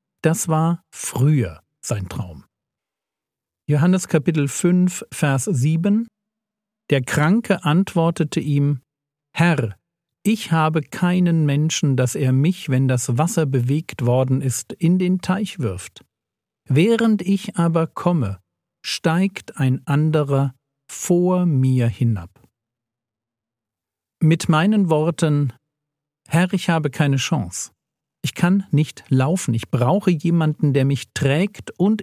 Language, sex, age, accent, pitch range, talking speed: German, male, 50-69, German, 125-175 Hz, 115 wpm